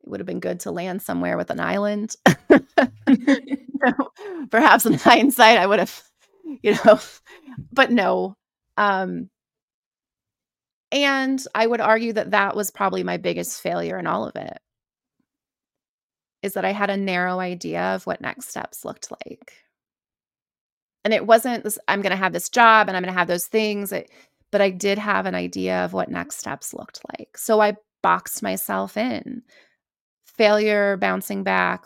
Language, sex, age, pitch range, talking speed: English, female, 30-49, 185-245 Hz, 160 wpm